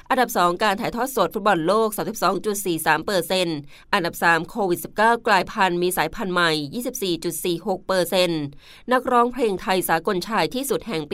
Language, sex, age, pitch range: Thai, female, 20-39, 175-210 Hz